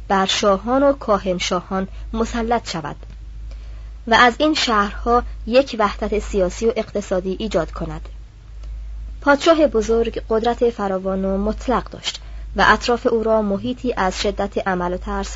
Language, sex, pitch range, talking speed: Persian, male, 190-235 Hz, 135 wpm